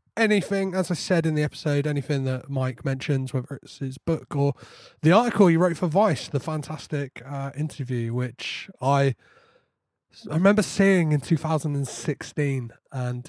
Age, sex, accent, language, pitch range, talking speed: 30-49, male, British, English, 125-150 Hz, 155 wpm